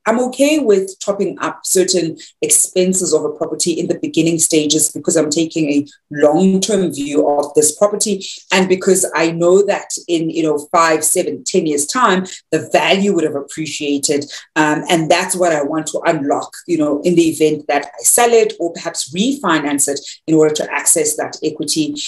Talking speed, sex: 185 wpm, female